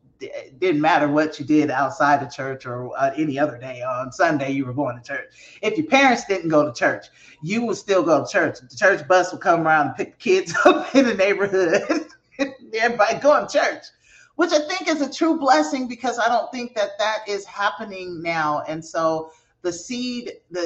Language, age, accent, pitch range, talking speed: English, 30-49, American, 140-215 Hz, 210 wpm